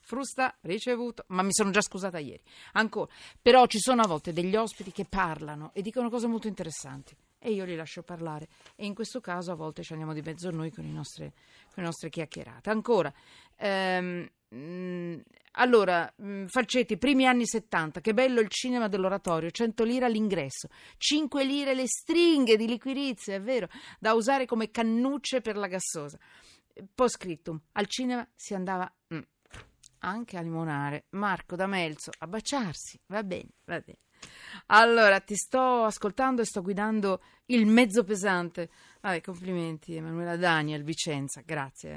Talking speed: 155 wpm